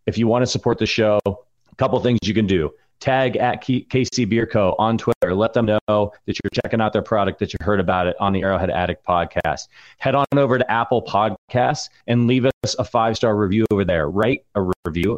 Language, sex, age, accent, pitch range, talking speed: English, male, 30-49, American, 100-120 Hz, 220 wpm